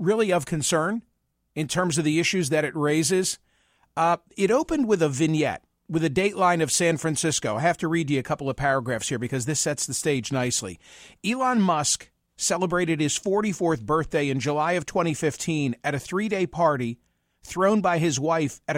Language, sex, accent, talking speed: English, male, American, 185 wpm